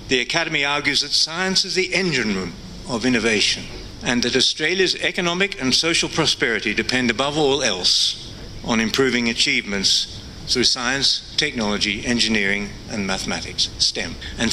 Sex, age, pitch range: male, 60-79, 110-155 Hz